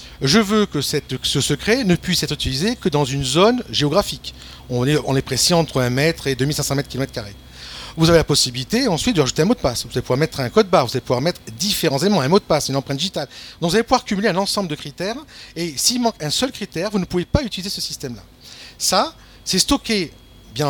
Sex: male